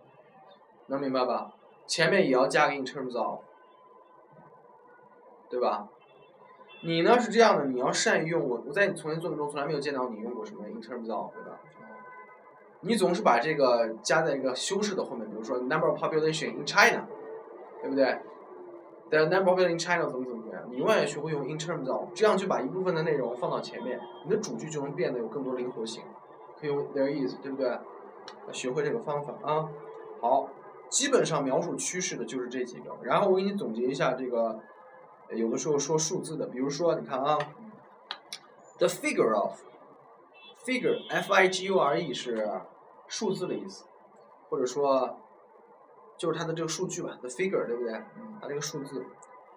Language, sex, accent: Chinese, male, native